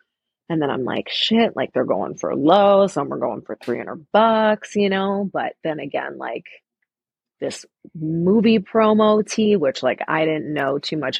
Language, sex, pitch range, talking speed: English, female, 150-195 Hz, 175 wpm